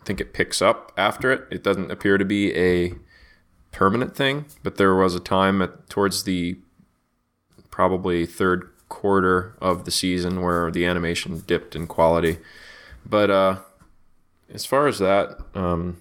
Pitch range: 85-105 Hz